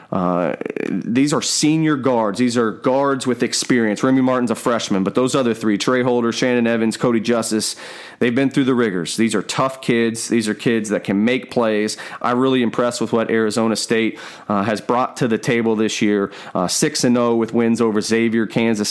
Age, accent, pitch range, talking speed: 30-49, American, 110-130 Hz, 195 wpm